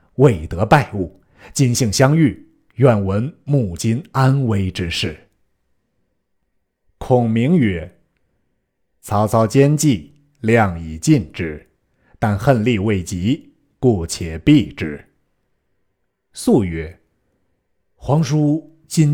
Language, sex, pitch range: Chinese, male, 95-140 Hz